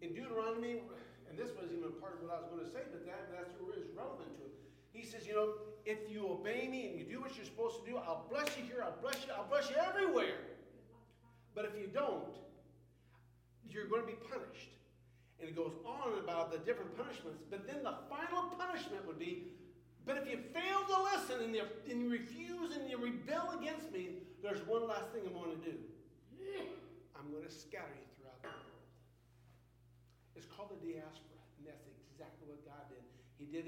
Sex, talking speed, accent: male, 200 wpm, American